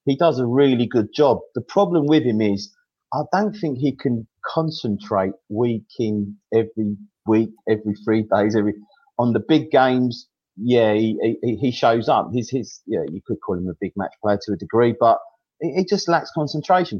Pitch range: 110-145 Hz